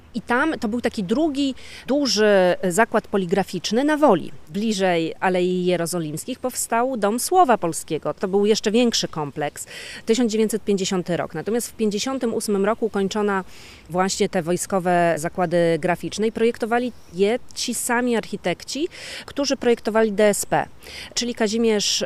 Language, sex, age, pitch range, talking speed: Polish, female, 30-49, 180-235 Hz, 125 wpm